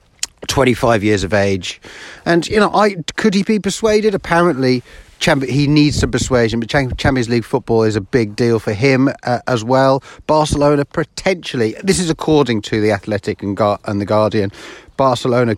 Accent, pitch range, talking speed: British, 110-145 Hz, 165 wpm